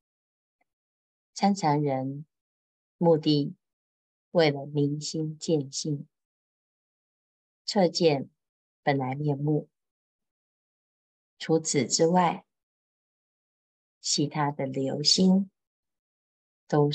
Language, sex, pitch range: Chinese, female, 135-170 Hz